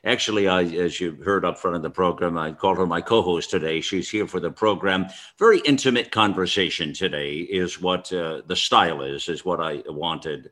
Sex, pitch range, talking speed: male, 85-110 Hz, 200 wpm